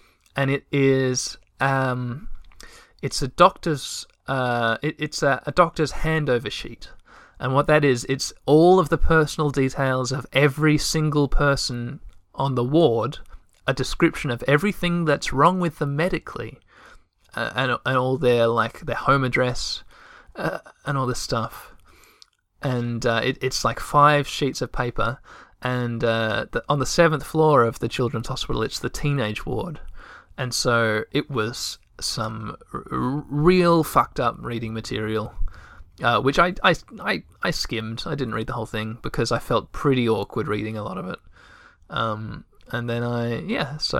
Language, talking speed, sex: English, 160 wpm, male